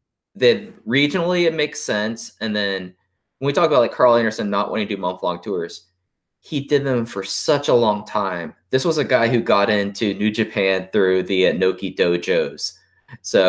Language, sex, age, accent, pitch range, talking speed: English, male, 20-39, American, 85-115 Hz, 190 wpm